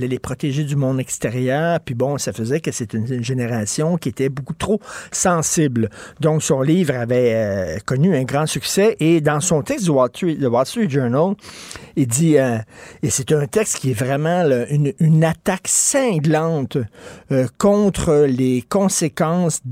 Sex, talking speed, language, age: male, 170 wpm, French, 50-69